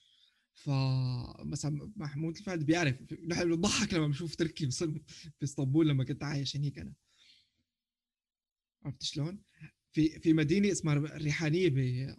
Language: Arabic